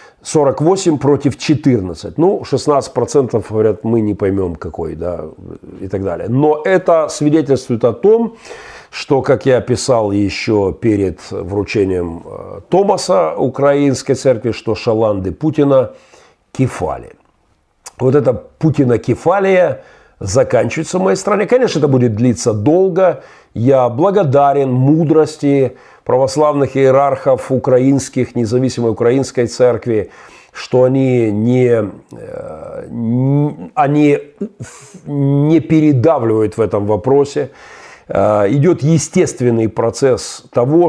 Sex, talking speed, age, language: male, 100 wpm, 40-59, Russian